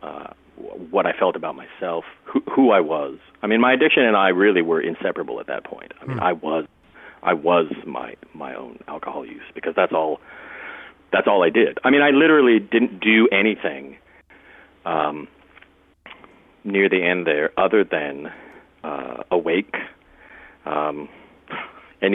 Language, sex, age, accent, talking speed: English, male, 40-59, American, 155 wpm